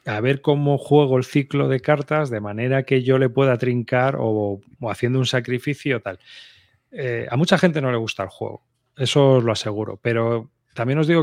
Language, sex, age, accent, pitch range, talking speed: Spanish, male, 30-49, Spanish, 115-140 Hz, 205 wpm